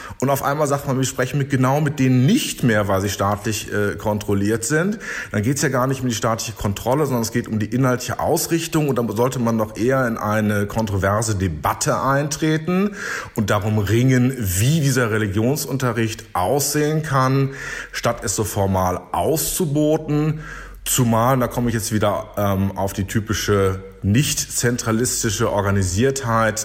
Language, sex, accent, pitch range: German, male, German, 110-135 Hz